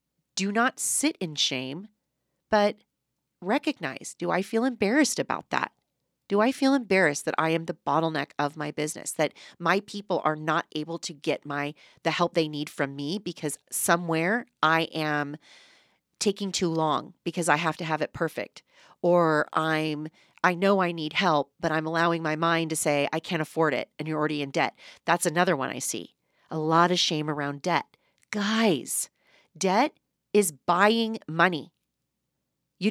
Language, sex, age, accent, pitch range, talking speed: English, female, 40-59, American, 155-205 Hz, 170 wpm